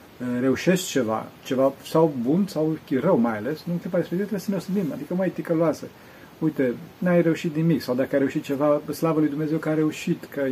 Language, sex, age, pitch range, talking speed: Romanian, male, 40-59, 130-170 Hz, 200 wpm